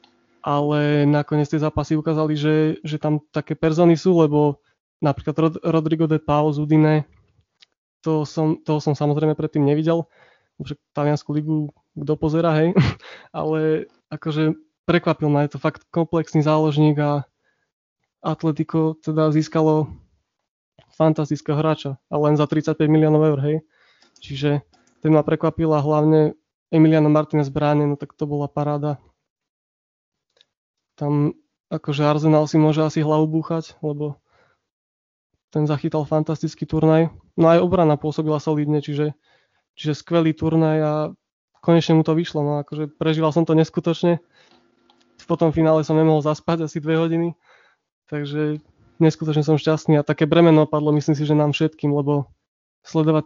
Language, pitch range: Czech, 150-160 Hz